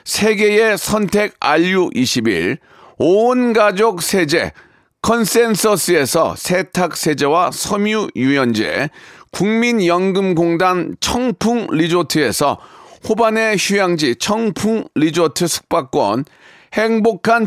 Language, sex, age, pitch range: Korean, male, 40-59, 175-225 Hz